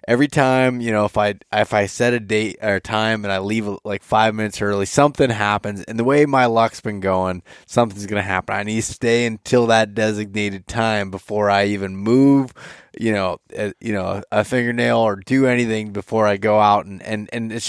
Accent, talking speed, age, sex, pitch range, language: American, 210 wpm, 20-39, male, 95-110 Hz, English